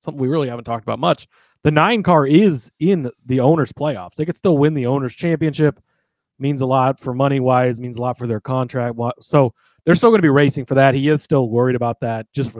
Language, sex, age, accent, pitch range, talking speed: English, male, 30-49, American, 125-150 Hz, 240 wpm